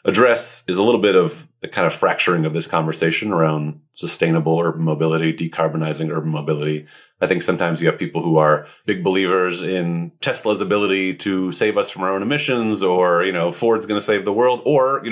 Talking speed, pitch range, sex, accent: 200 wpm, 80-95 Hz, male, American